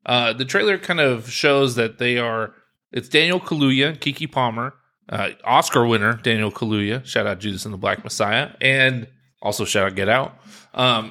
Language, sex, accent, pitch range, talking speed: English, male, American, 115-150 Hz, 180 wpm